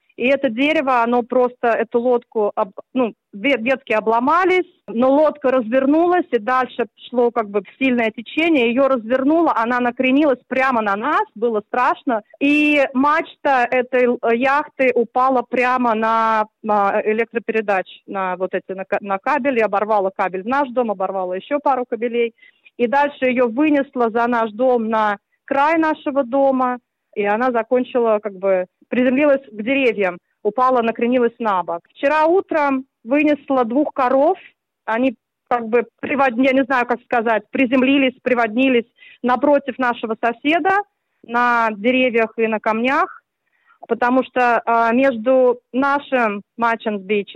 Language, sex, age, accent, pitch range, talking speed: Russian, female, 30-49, native, 225-275 Hz, 140 wpm